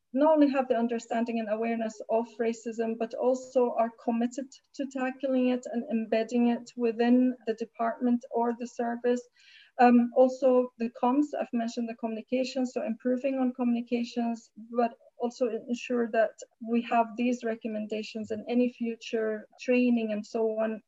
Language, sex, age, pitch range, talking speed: English, female, 30-49, 225-255 Hz, 150 wpm